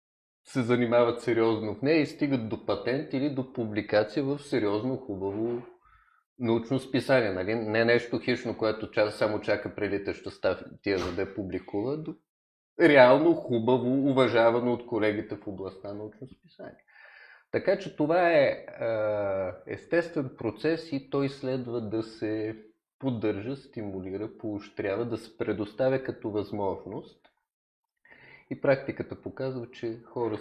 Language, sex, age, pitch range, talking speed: Bulgarian, male, 30-49, 105-135 Hz, 135 wpm